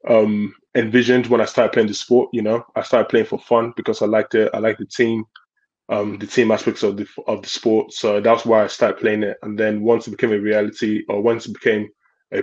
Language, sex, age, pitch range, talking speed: English, male, 20-39, 105-120 Hz, 245 wpm